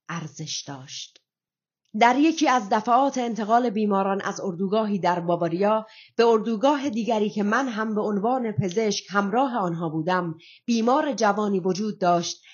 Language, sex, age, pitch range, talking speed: Persian, female, 30-49, 170-215 Hz, 135 wpm